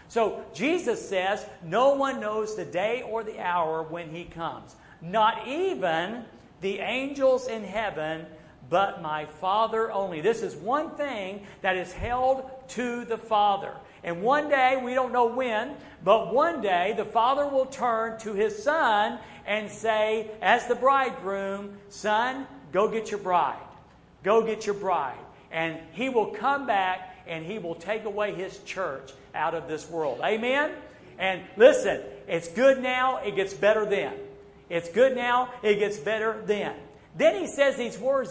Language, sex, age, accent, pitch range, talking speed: English, male, 50-69, American, 185-250 Hz, 160 wpm